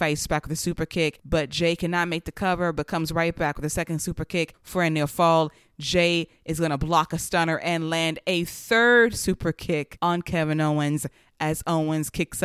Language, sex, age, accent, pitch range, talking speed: English, female, 20-39, American, 150-170 Hz, 205 wpm